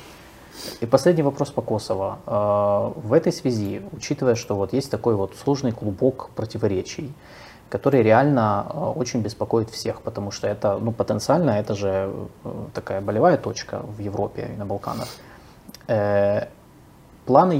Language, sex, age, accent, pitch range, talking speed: Russian, male, 20-39, native, 105-135 Hz, 130 wpm